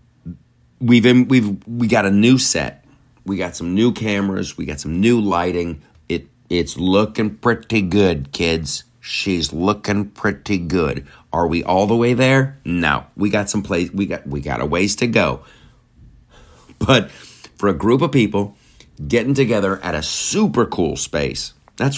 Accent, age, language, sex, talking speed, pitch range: American, 50-69, English, male, 165 wpm, 85-120 Hz